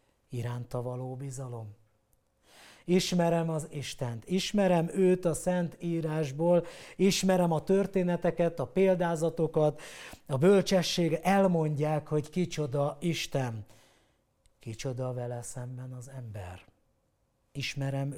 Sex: male